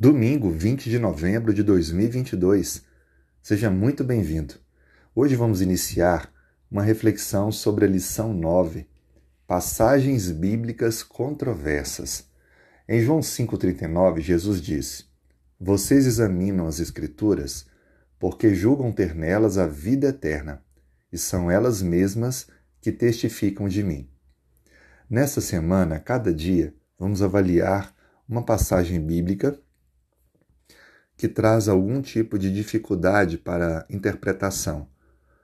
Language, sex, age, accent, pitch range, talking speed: Portuguese, male, 40-59, Brazilian, 80-110 Hz, 105 wpm